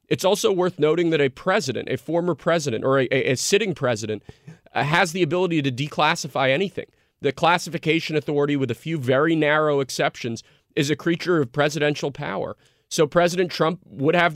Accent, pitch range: American, 135-165 Hz